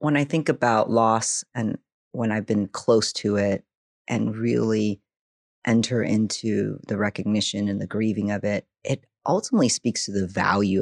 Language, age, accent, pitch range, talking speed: English, 30-49, American, 100-125 Hz, 160 wpm